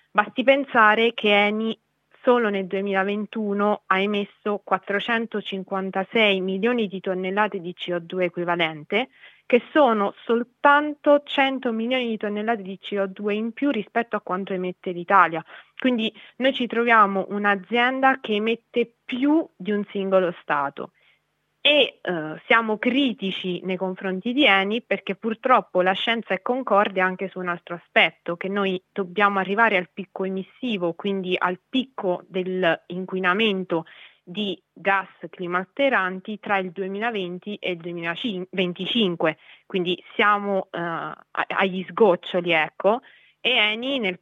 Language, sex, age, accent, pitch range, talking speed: Italian, female, 20-39, native, 185-225 Hz, 125 wpm